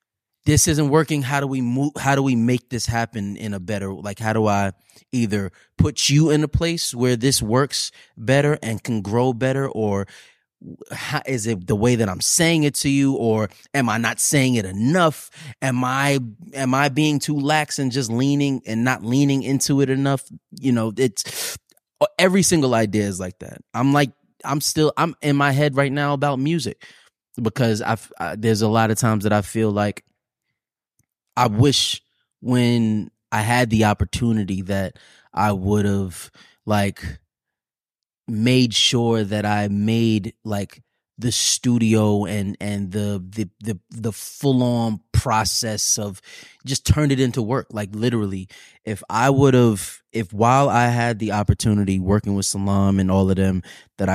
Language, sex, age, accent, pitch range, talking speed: English, male, 20-39, American, 105-135 Hz, 175 wpm